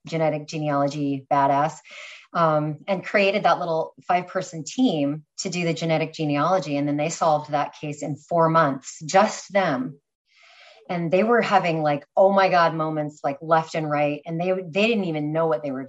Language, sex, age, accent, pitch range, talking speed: English, female, 30-49, American, 150-185 Hz, 185 wpm